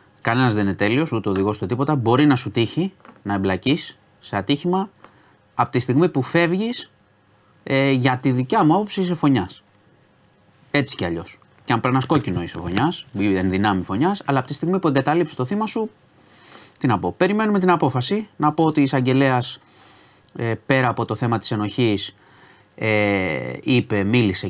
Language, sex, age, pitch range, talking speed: Greek, male, 30-49, 100-140 Hz, 160 wpm